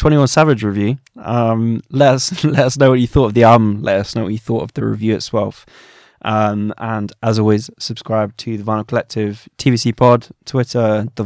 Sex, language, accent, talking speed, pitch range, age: male, English, British, 210 wpm, 105-125 Hz, 20-39